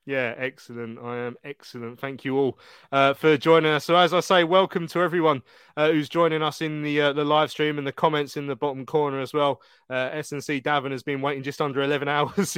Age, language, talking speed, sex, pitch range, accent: 20-39, English, 230 wpm, male, 135-160 Hz, British